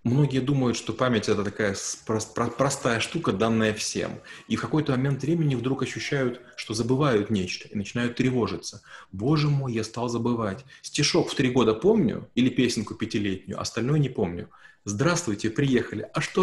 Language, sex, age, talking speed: Russian, male, 20-39, 155 wpm